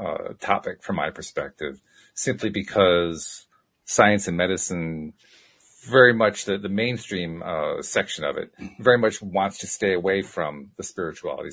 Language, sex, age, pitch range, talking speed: English, male, 40-59, 90-125 Hz, 145 wpm